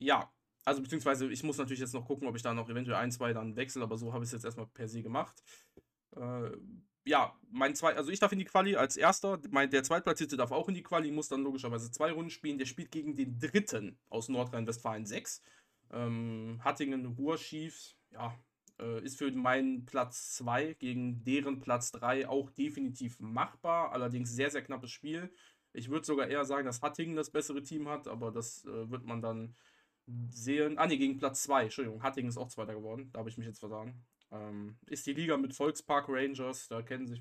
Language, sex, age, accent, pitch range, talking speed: German, male, 20-39, German, 115-150 Hz, 210 wpm